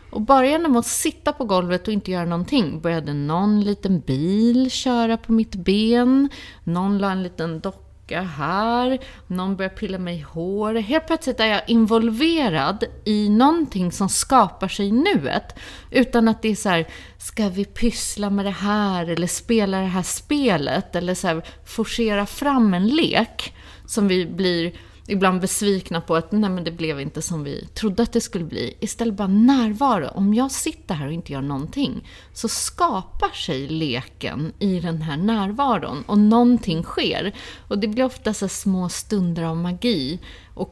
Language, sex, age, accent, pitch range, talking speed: Swedish, female, 30-49, native, 175-235 Hz, 170 wpm